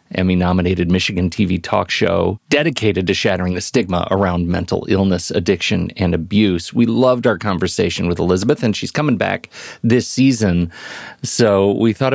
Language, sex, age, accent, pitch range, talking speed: English, male, 40-59, American, 95-130 Hz, 155 wpm